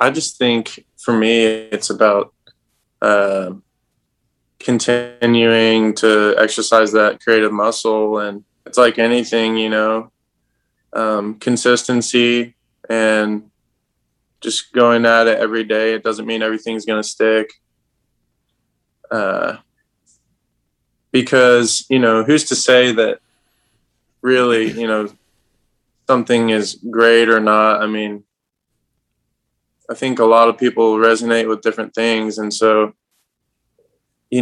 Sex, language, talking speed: male, English, 115 wpm